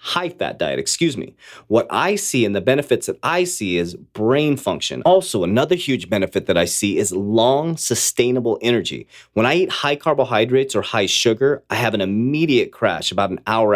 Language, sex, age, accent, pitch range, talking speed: English, male, 30-49, American, 110-155 Hz, 190 wpm